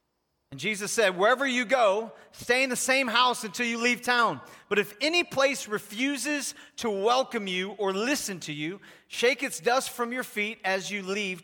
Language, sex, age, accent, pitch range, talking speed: English, male, 40-59, American, 200-255 Hz, 190 wpm